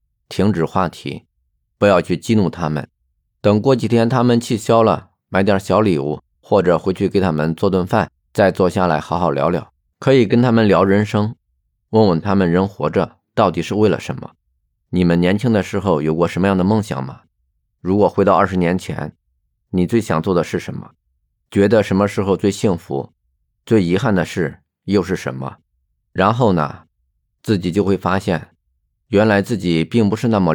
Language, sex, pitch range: Chinese, male, 75-105 Hz